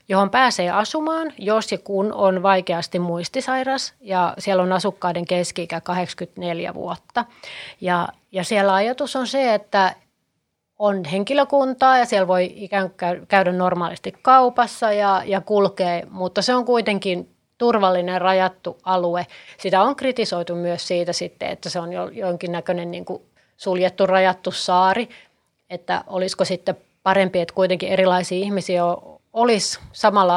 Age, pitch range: 30-49, 180-205 Hz